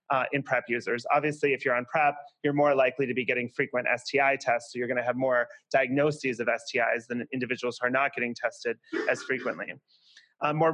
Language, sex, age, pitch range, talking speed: English, male, 30-49, 130-145 Hz, 210 wpm